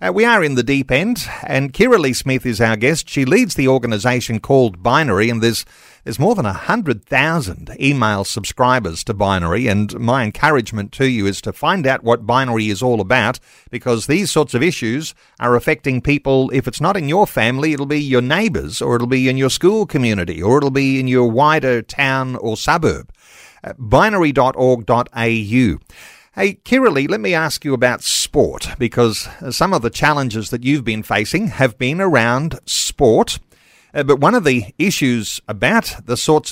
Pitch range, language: 120-155 Hz, English